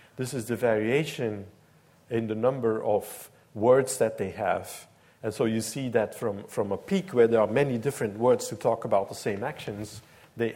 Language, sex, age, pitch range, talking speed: English, male, 50-69, 115-150 Hz, 195 wpm